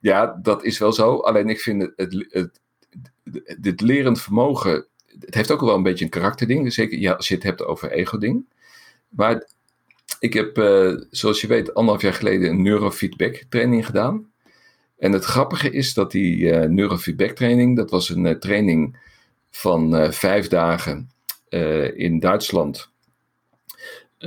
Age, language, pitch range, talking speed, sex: 50-69, Dutch, 90-125 Hz, 170 wpm, male